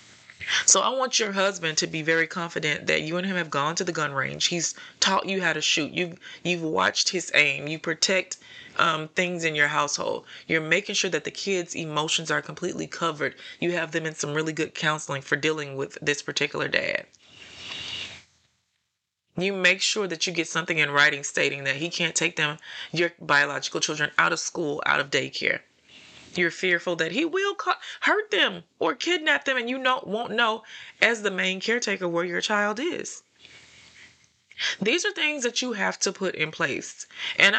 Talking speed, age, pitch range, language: 190 wpm, 30-49, 160-205 Hz, English